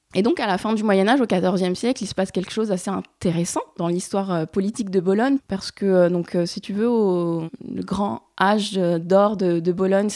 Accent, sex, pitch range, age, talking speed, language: French, female, 175-205 Hz, 20-39, 200 wpm, French